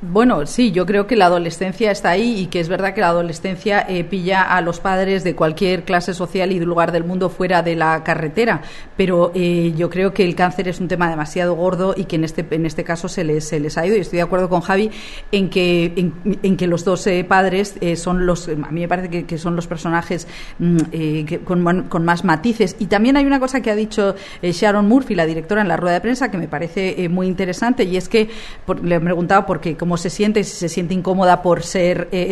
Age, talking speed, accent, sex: 40-59, 255 wpm, Spanish, female